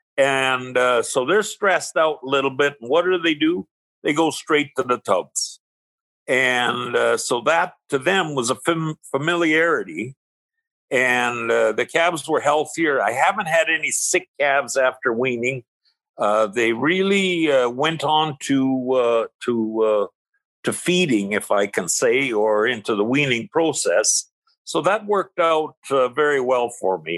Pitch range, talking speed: 120-175 Hz, 160 wpm